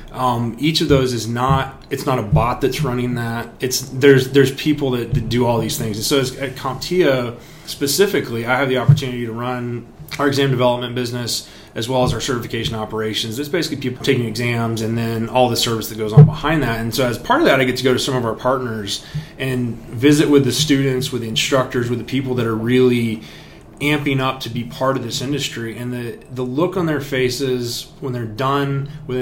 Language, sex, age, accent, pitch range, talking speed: English, male, 30-49, American, 120-140 Hz, 215 wpm